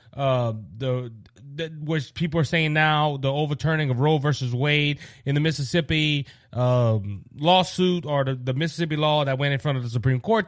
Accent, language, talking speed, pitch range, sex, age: American, English, 185 wpm, 135-185 Hz, male, 30-49